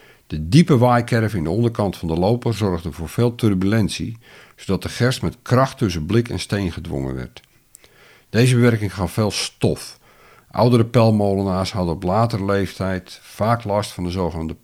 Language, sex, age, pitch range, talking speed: Dutch, male, 60-79, 90-115 Hz, 165 wpm